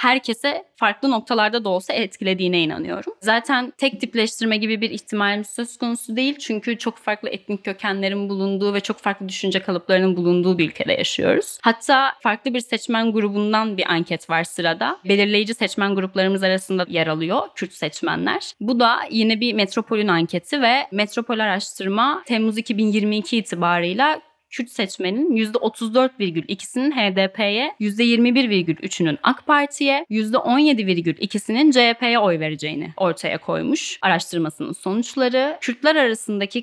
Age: 10-29